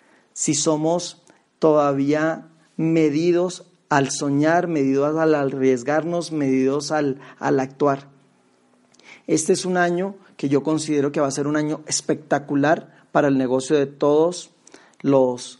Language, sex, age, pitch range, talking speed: Spanish, male, 40-59, 140-160 Hz, 125 wpm